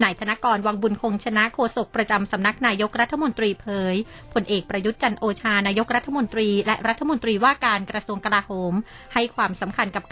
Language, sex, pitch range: Thai, female, 200-235 Hz